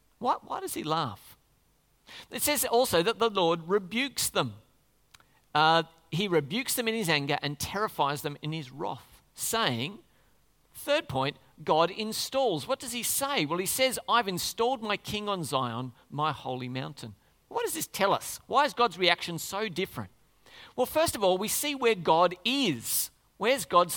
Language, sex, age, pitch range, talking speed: English, male, 50-69, 160-240 Hz, 170 wpm